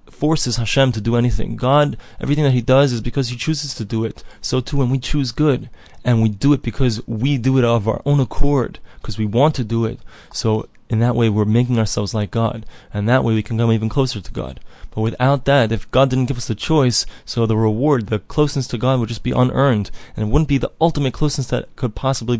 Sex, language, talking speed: male, English, 245 wpm